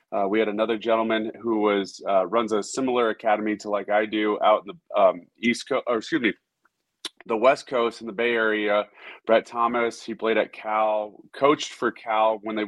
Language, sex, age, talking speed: English, male, 30-49, 205 wpm